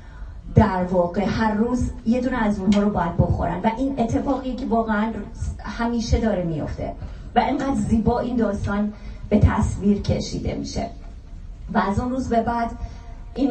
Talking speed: 155 wpm